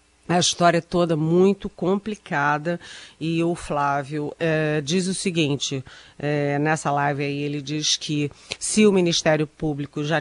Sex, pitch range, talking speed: female, 155-195 Hz, 140 wpm